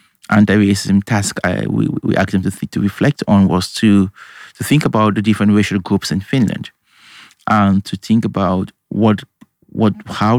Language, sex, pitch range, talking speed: English, male, 100-115 Hz, 175 wpm